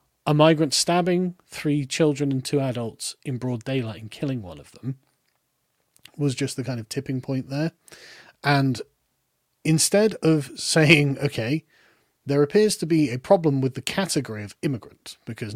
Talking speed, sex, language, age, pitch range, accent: 160 wpm, male, English, 40-59, 125-160 Hz, British